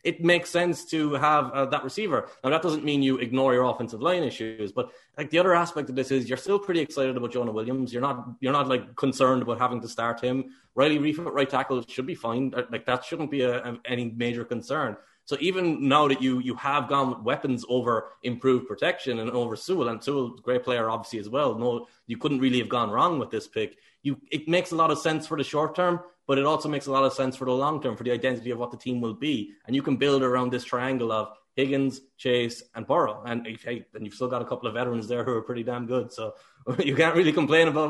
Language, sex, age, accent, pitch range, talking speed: English, male, 20-39, Irish, 120-140 Hz, 250 wpm